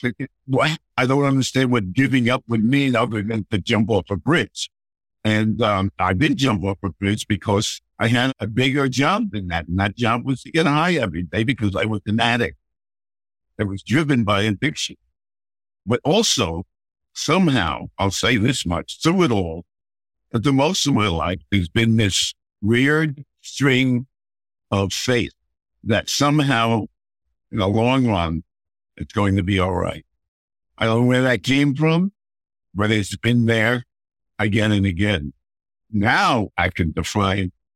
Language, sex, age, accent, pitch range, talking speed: English, male, 60-79, American, 95-125 Hz, 165 wpm